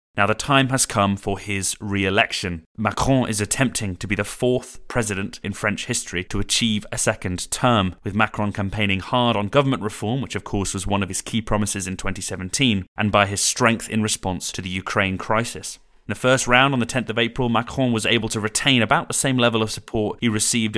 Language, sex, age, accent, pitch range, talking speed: English, male, 30-49, British, 95-120 Hz, 215 wpm